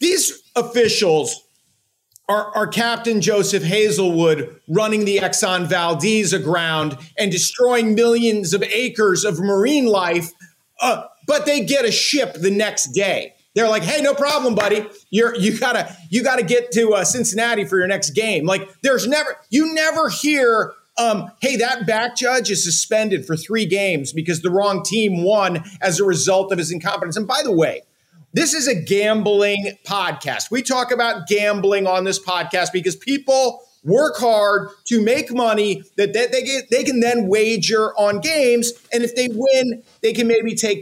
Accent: American